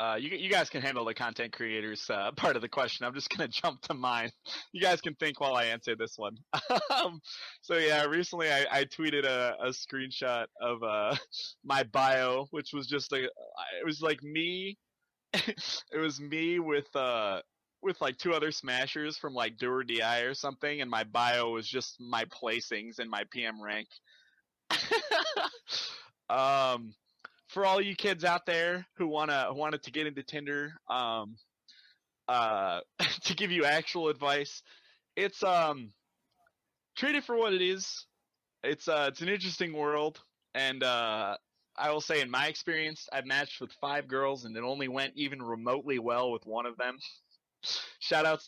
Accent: American